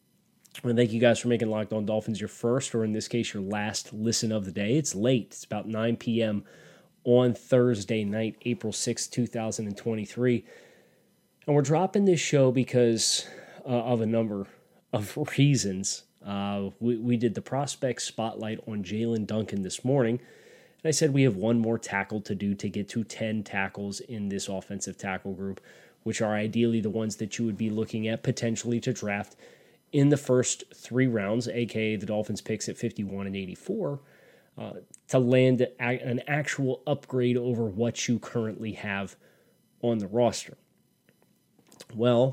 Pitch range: 105-125 Hz